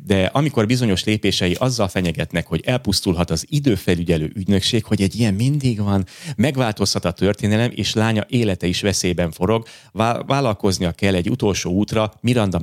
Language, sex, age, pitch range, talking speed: Hungarian, male, 30-49, 95-125 Hz, 150 wpm